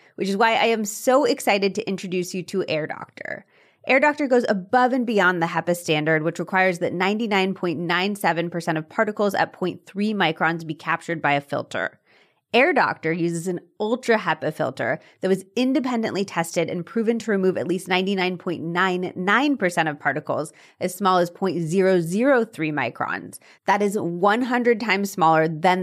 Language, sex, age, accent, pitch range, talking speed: English, female, 30-49, American, 170-220 Hz, 145 wpm